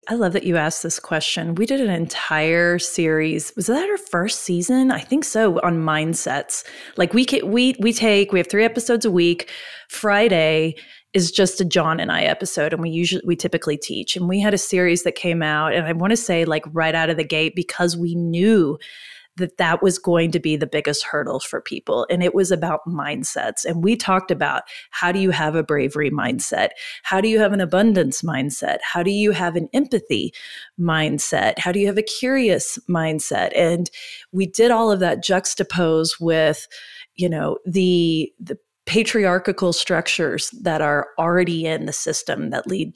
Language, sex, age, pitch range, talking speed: English, female, 30-49, 165-210 Hz, 195 wpm